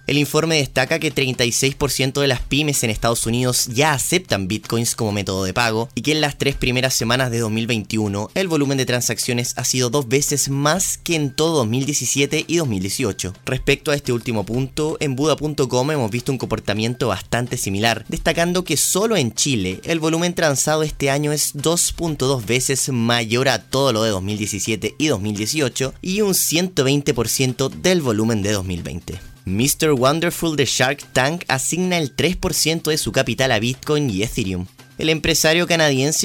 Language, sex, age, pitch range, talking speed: Spanish, male, 20-39, 115-150 Hz, 165 wpm